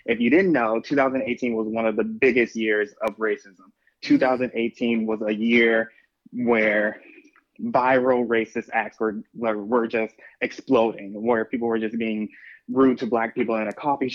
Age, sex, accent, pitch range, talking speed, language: 20-39, male, American, 110-130 Hz, 155 wpm, English